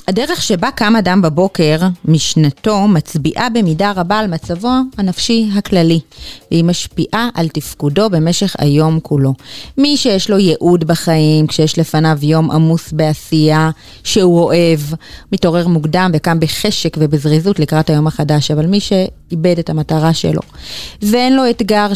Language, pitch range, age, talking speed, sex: Hebrew, 155-190 Hz, 30-49, 135 wpm, female